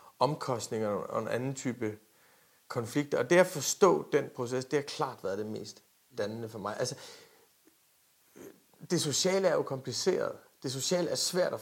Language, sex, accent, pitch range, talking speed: Danish, male, native, 130-180 Hz, 165 wpm